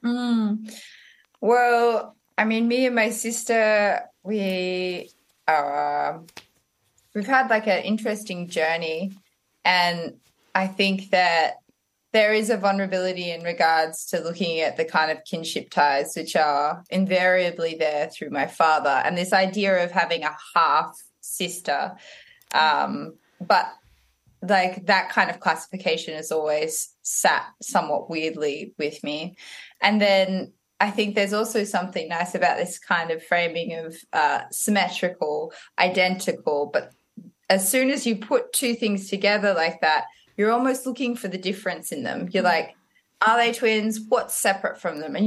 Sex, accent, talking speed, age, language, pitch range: female, Australian, 145 wpm, 20-39, English, 170-220 Hz